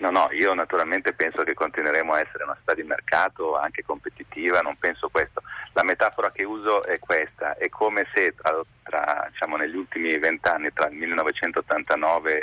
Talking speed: 175 wpm